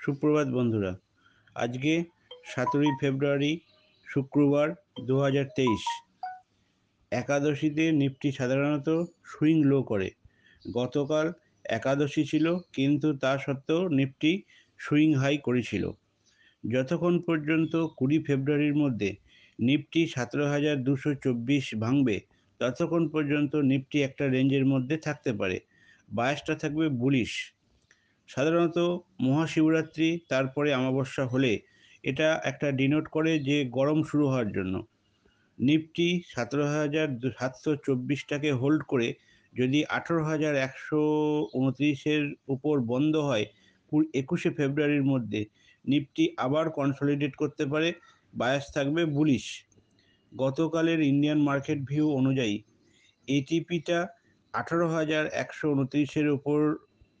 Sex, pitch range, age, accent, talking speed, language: male, 135-155 Hz, 50-69, Indian, 90 wpm, English